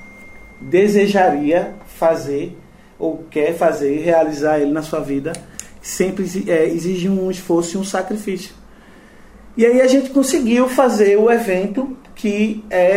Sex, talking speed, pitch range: male, 135 wpm, 155-205 Hz